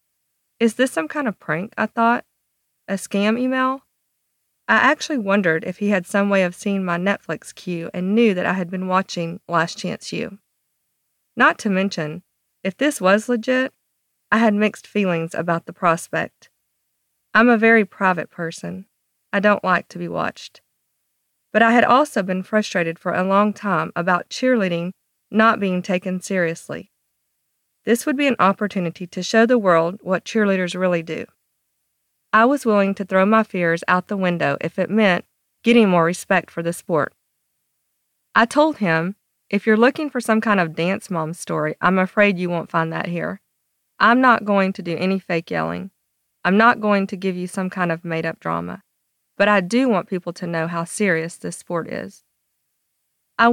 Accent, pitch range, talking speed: American, 175-220 Hz, 180 wpm